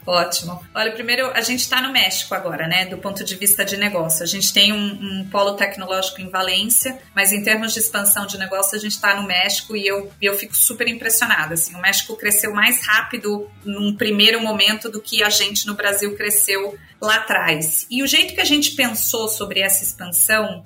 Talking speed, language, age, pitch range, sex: 205 wpm, Portuguese, 30-49, 205-270 Hz, female